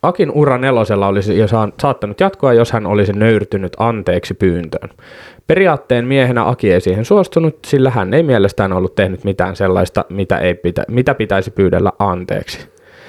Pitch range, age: 100-130 Hz, 20-39